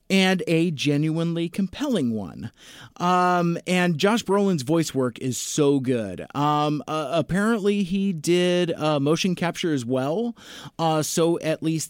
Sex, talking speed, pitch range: male, 140 wpm, 130-175 Hz